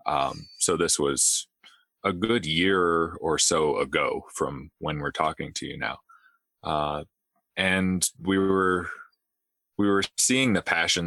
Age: 30-49